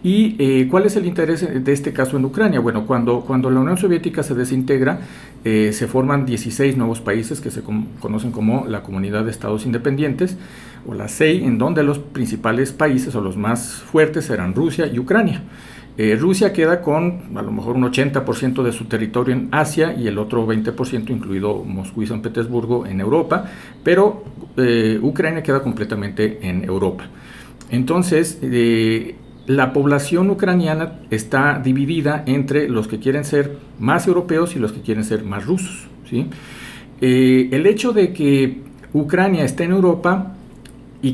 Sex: male